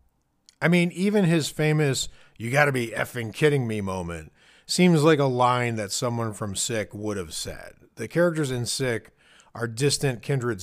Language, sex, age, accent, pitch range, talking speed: English, male, 40-59, American, 105-145 Hz, 140 wpm